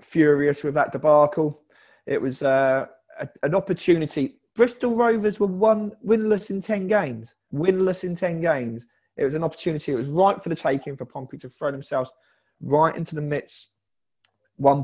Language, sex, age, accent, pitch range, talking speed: English, male, 30-49, British, 125-160 Hz, 170 wpm